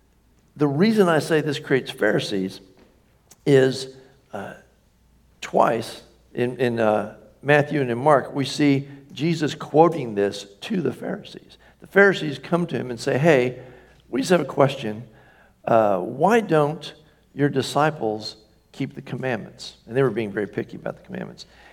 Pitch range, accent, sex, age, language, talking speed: 110-155 Hz, American, male, 60-79, English, 150 wpm